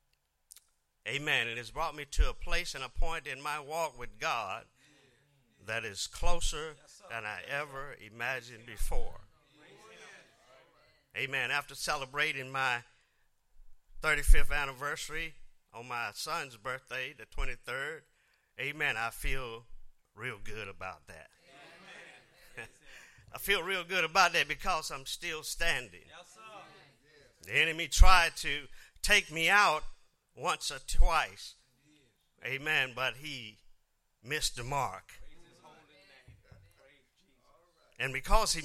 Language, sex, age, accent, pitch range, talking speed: English, male, 50-69, American, 110-150 Hz, 110 wpm